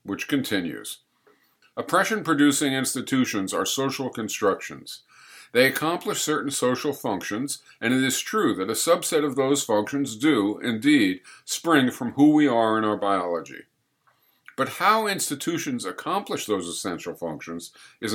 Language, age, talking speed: English, 50-69, 130 wpm